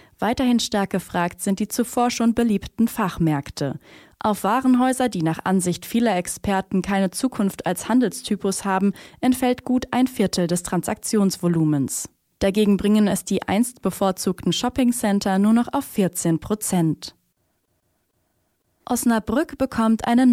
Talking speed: 125 wpm